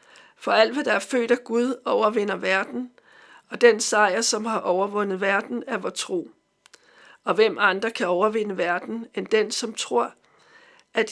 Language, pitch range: Danish, 195-245 Hz